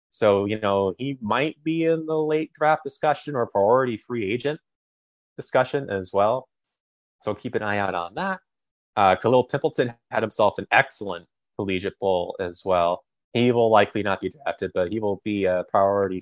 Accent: American